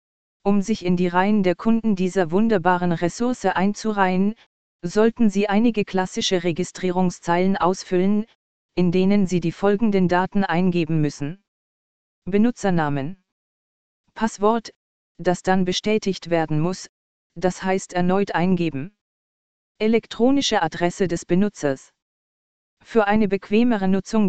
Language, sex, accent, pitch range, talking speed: German, female, German, 175-205 Hz, 110 wpm